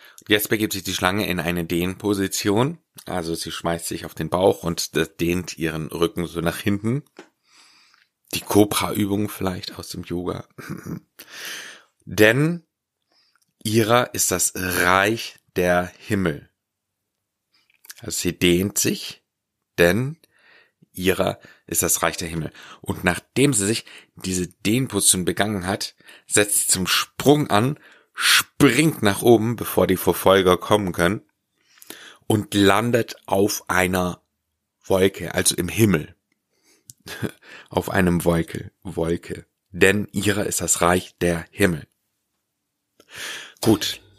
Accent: German